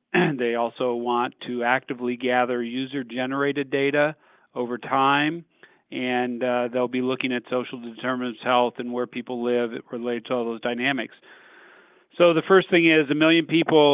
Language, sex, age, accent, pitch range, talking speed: English, male, 40-59, American, 125-140 Hz, 165 wpm